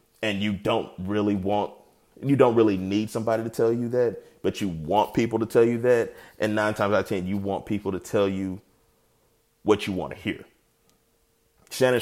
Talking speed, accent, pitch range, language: 200 wpm, American, 90-110 Hz, English